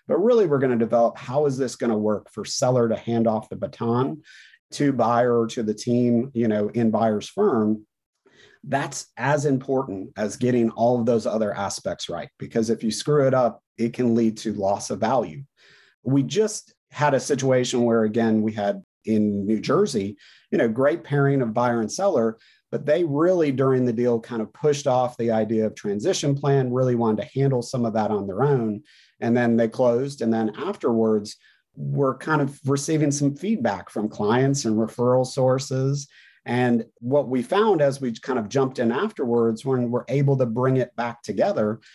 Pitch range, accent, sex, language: 115-140 Hz, American, male, English